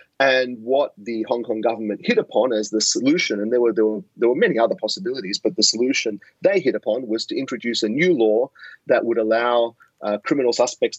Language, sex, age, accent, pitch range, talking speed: English, male, 30-49, Australian, 105-120 Hz, 215 wpm